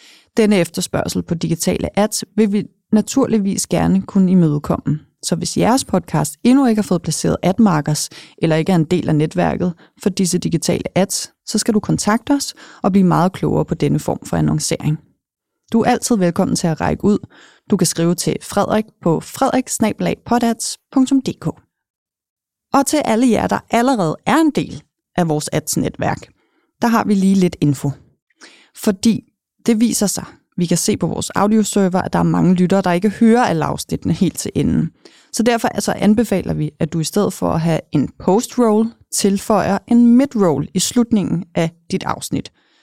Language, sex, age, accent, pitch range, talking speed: Danish, female, 30-49, native, 170-220 Hz, 170 wpm